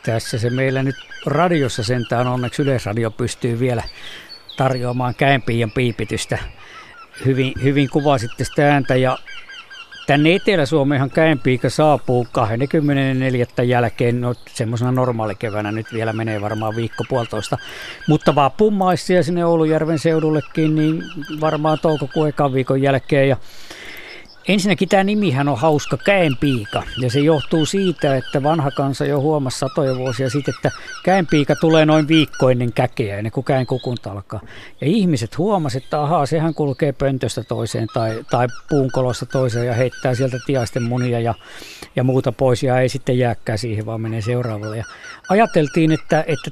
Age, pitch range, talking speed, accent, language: 50-69, 120-155 Hz, 145 wpm, native, Finnish